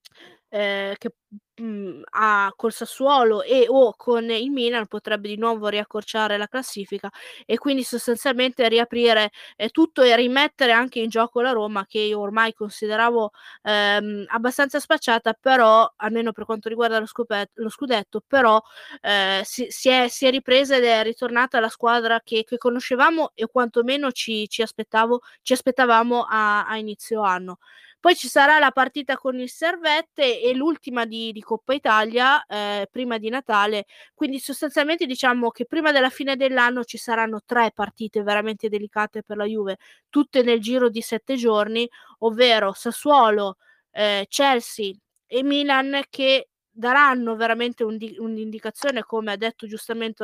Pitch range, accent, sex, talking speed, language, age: 215-265 Hz, native, female, 150 wpm, Italian, 20-39